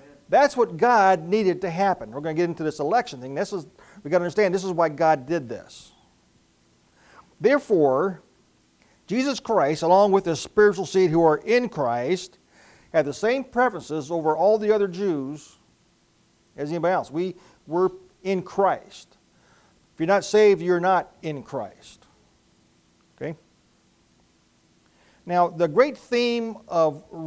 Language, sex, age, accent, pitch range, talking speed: English, male, 40-59, American, 155-205 Hz, 150 wpm